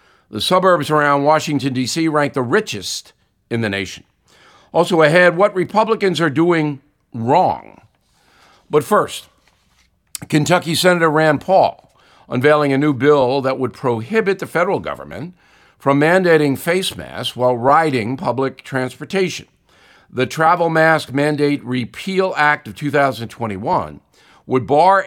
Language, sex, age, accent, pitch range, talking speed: English, male, 60-79, American, 125-160 Hz, 125 wpm